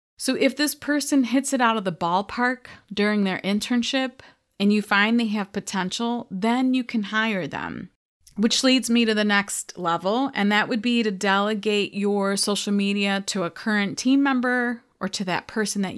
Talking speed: 190 wpm